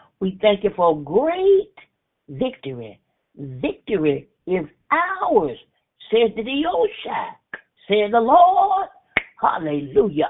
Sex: female